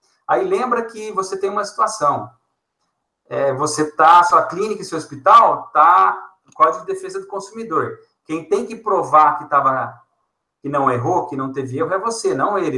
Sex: male